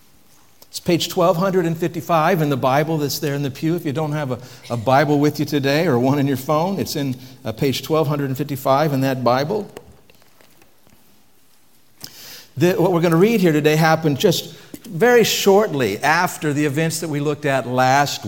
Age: 60-79